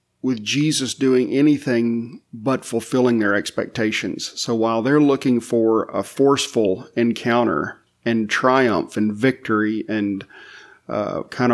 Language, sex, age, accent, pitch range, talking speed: English, male, 40-59, American, 110-125 Hz, 120 wpm